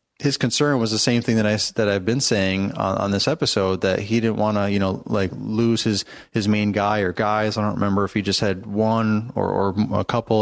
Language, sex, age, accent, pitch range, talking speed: English, male, 30-49, American, 105-120 Hz, 250 wpm